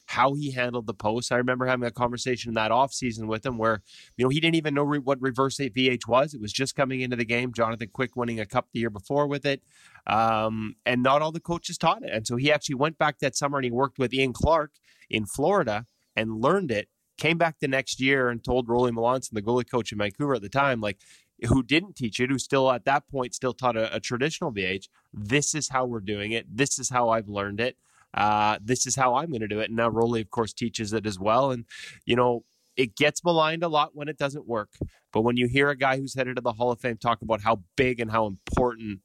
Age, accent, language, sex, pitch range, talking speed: 20-39, American, English, male, 115-140 Hz, 255 wpm